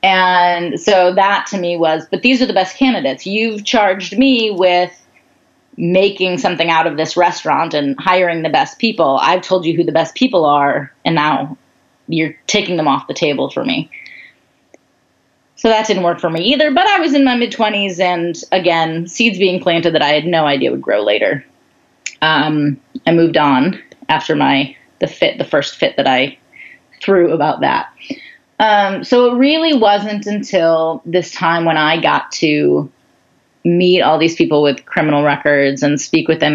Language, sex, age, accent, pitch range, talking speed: English, female, 30-49, American, 155-210 Hz, 180 wpm